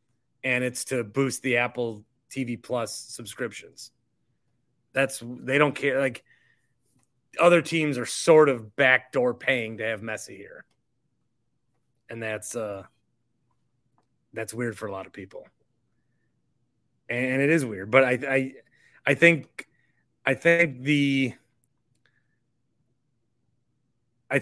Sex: male